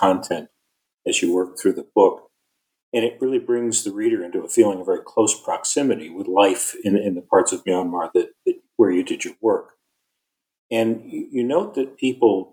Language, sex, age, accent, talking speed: English, male, 50-69, American, 195 wpm